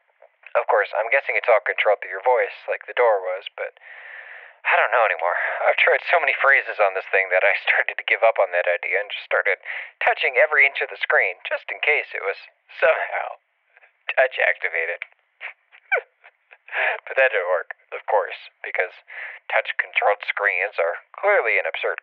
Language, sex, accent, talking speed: English, male, American, 175 wpm